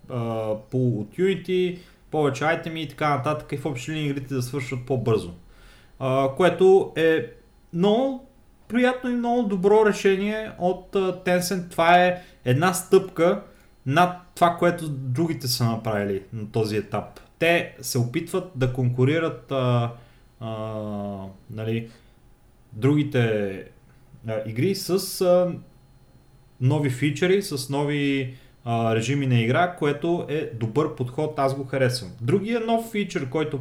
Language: Bulgarian